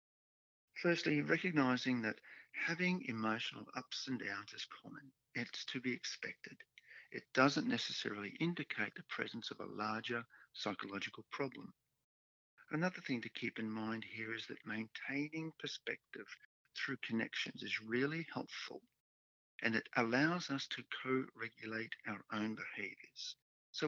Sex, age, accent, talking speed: male, 50-69, Australian, 130 wpm